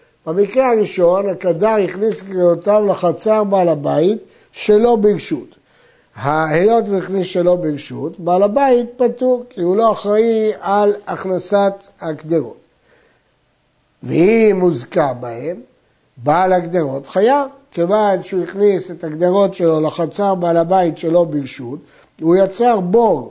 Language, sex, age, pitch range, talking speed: Hebrew, male, 60-79, 175-230 Hz, 115 wpm